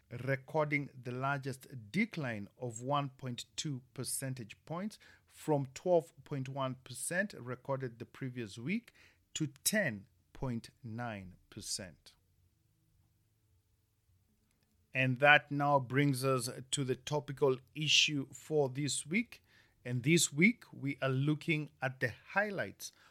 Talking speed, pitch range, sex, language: 95 wpm, 120-145 Hz, male, English